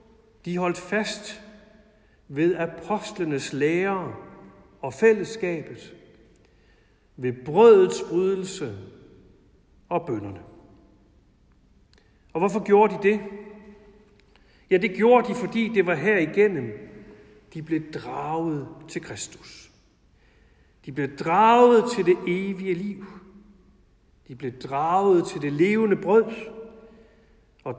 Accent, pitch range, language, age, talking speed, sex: native, 130-195 Hz, Danish, 60-79, 100 wpm, male